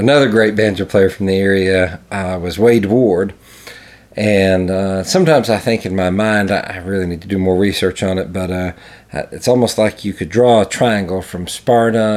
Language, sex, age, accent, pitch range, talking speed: English, male, 40-59, American, 90-105 Hz, 195 wpm